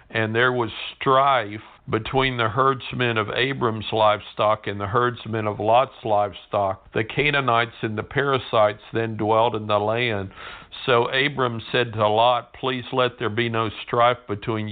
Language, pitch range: English, 105-125 Hz